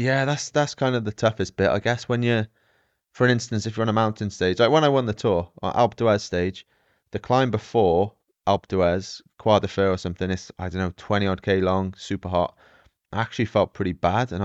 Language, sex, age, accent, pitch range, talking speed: English, male, 20-39, British, 95-110 Hz, 225 wpm